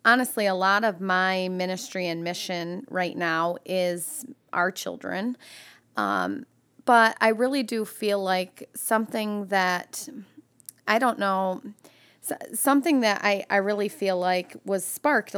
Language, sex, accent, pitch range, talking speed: English, female, American, 180-210 Hz, 135 wpm